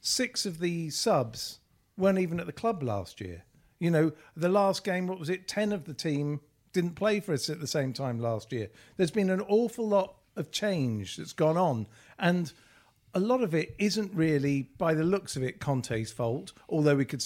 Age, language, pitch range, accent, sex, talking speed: 50-69, English, 130-190 Hz, British, male, 210 wpm